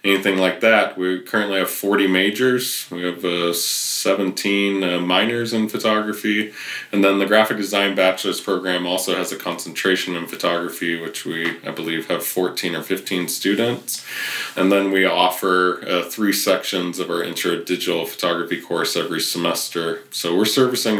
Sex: male